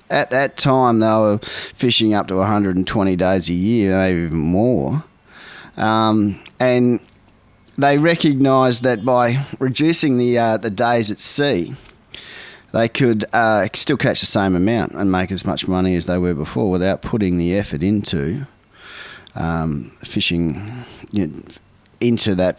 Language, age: English, 30-49